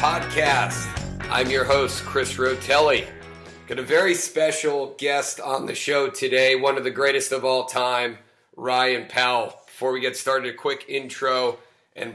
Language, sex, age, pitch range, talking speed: English, male, 40-59, 125-145 Hz, 160 wpm